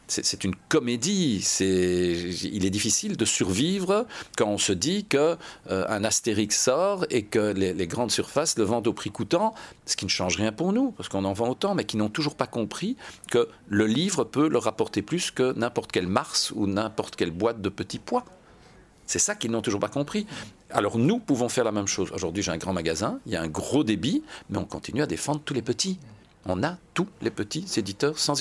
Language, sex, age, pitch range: French, male, 50-69, 100-155 Hz